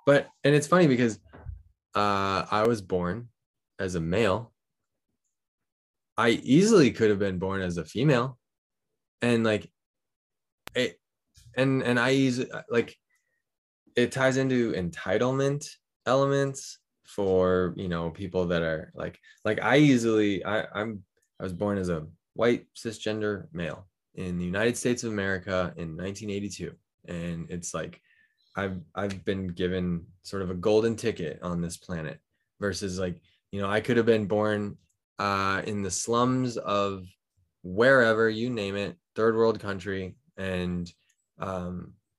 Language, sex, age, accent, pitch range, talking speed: English, male, 20-39, American, 90-115 Hz, 145 wpm